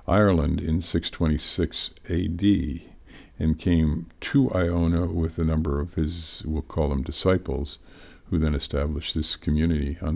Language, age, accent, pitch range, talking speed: English, 50-69, American, 75-85 Hz, 135 wpm